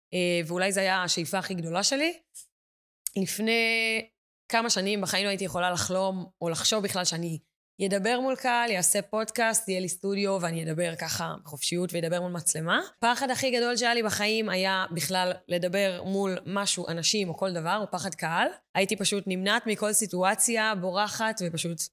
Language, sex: Hebrew, female